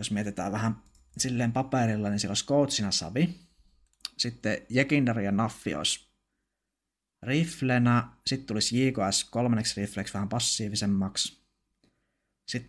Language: Finnish